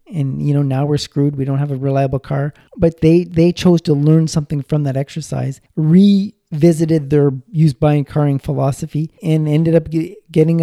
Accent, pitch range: American, 145-180 Hz